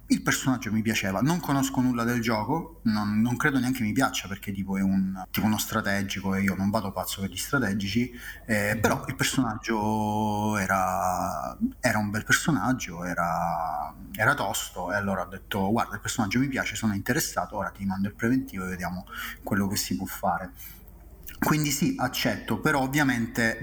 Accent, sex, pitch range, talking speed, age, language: native, male, 100-120 Hz, 180 wpm, 30-49, Italian